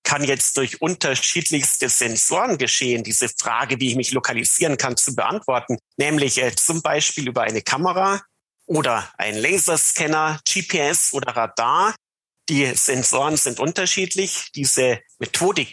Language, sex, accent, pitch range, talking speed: German, male, German, 120-155 Hz, 130 wpm